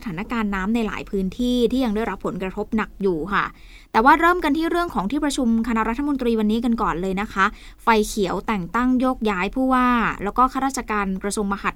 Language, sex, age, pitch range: Thai, female, 20-39, 210-270 Hz